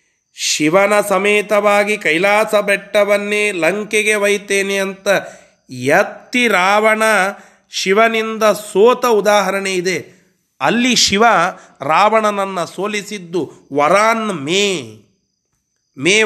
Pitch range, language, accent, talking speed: 165-210 Hz, Kannada, native, 75 wpm